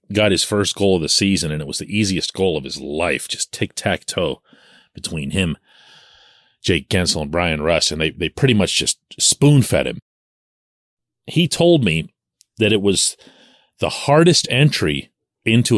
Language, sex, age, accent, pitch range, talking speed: English, male, 40-59, American, 95-135 Hz, 165 wpm